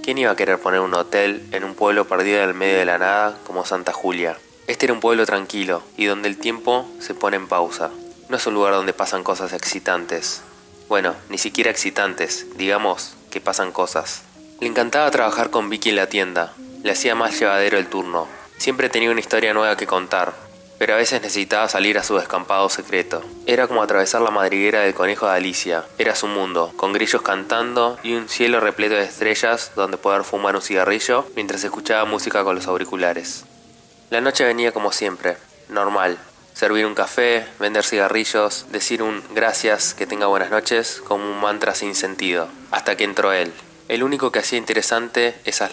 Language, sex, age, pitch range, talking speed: Spanish, male, 20-39, 95-115 Hz, 190 wpm